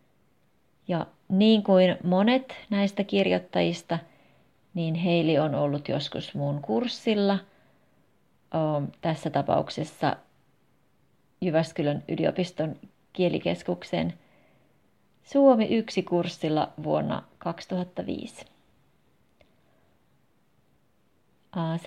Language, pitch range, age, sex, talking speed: Finnish, 165-205 Hz, 30-49, female, 60 wpm